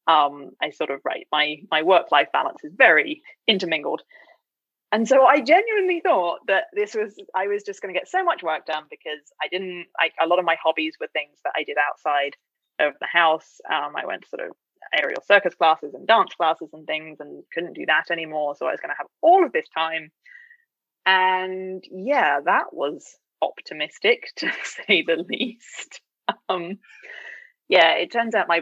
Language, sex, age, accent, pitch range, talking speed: English, female, 20-39, British, 175-285 Hz, 195 wpm